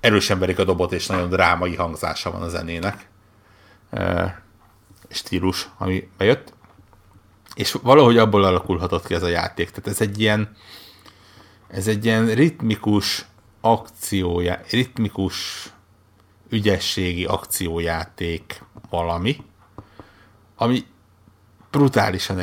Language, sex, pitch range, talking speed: Hungarian, male, 90-105 Hz, 100 wpm